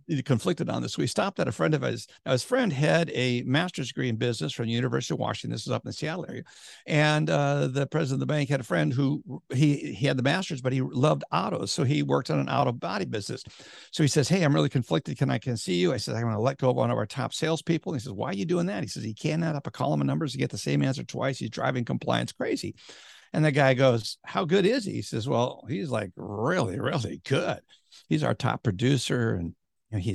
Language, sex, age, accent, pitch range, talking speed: English, male, 60-79, American, 125-165 Hz, 265 wpm